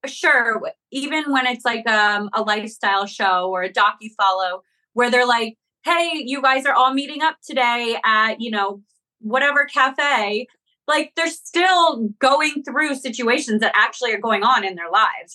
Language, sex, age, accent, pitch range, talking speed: English, female, 20-39, American, 205-275 Hz, 170 wpm